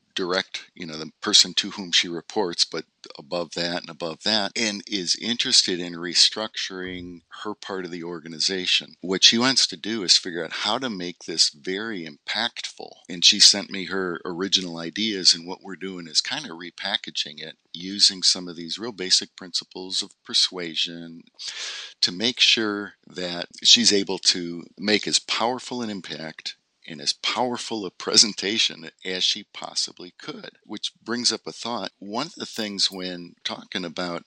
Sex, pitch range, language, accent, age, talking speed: male, 85-105 Hz, English, American, 50-69, 170 wpm